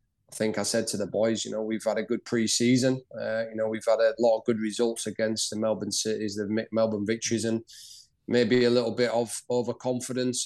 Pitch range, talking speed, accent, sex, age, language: 115-125 Hz, 210 wpm, British, male, 20-39, English